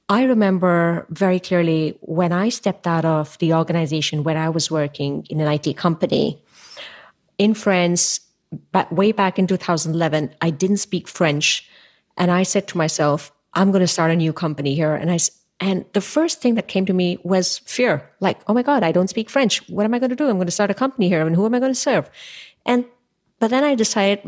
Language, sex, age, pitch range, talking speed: English, female, 30-49, 160-200 Hz, 215 wpm